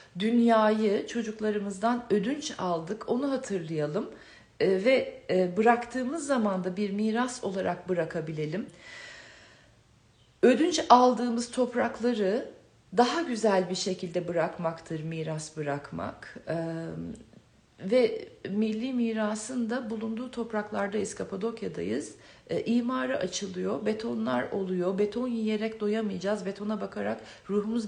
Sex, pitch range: female, 180-230 Hz